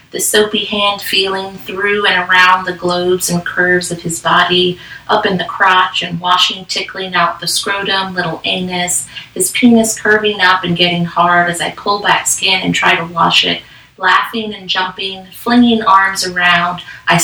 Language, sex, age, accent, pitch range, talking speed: English, female, 30-49, American, 180-200 Hz, 175 wpm